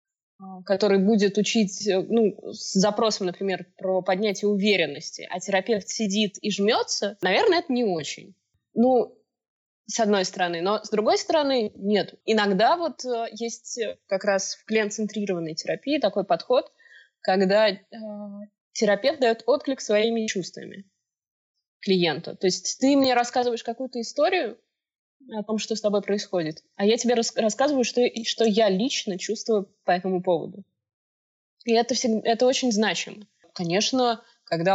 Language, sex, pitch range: Russian, female, 190-235 Hz